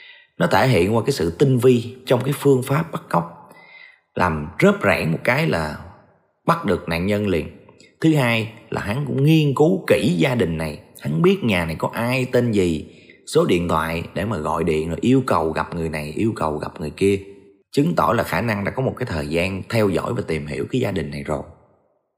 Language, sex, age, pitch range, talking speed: Vietnamese, male, 20-39, 85-140 Hz, 225 wpm